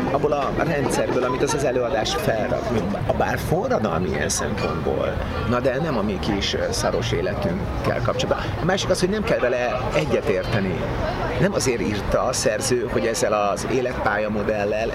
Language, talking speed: Hungarian, 160 wpm